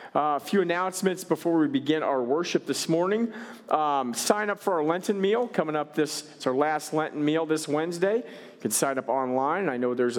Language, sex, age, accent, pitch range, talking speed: English, male, 40-59, American, 120-175 Hz, 210 wpm